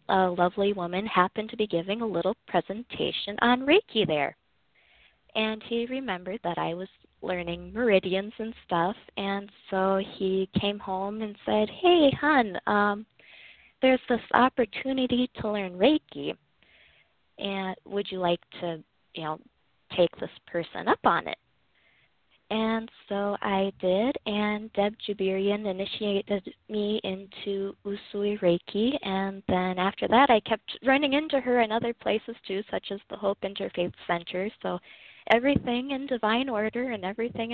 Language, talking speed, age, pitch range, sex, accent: English, 145 wpm, 20-39, 185-225 Hz, female, American